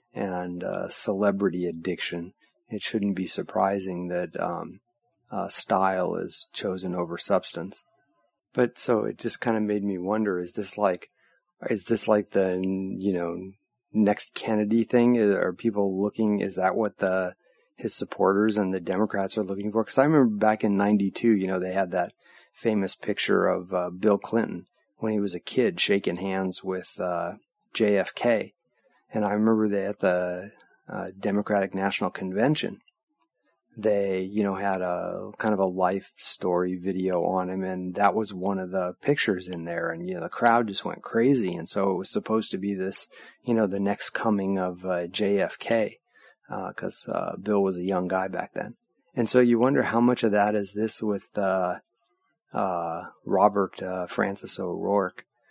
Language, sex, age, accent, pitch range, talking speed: English, male, 30-49, American, 95-105 Hz, 175 wpm